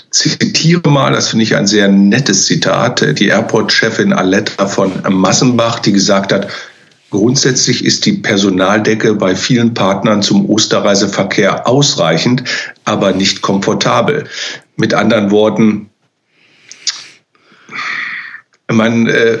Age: 50-69